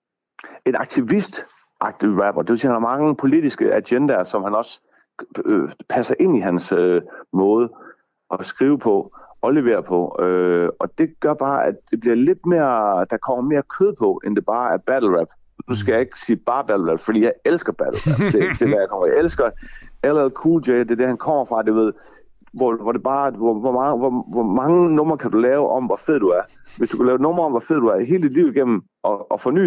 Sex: male